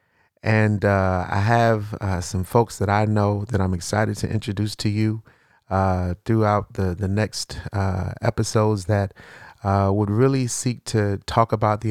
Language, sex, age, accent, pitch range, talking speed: English, male, 40-59, American, 100-115 Hz, 165 wpm